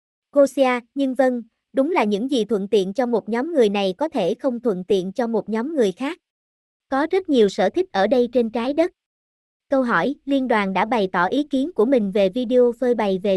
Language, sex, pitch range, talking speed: Vietnamese, male, 205-265 Hz, 225 wpm